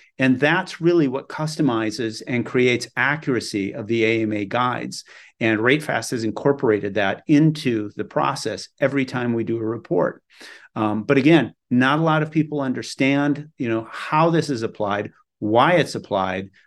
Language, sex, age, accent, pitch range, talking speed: English, male, 40-59, American, 110-140 Hz, 150 wpm